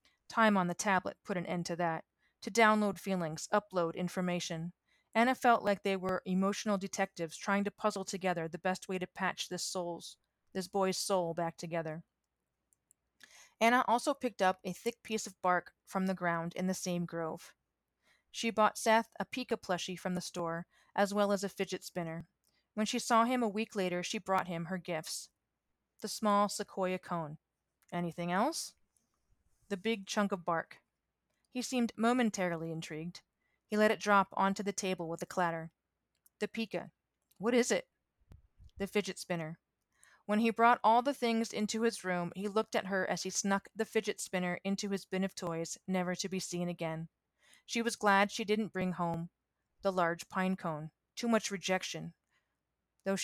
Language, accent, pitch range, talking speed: English, American, 175-215 Hz, 175 wpm